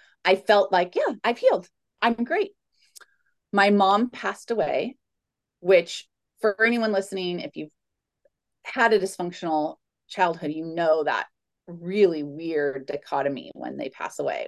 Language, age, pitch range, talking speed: English, 30-49, 155-205 Hz, 135 wpm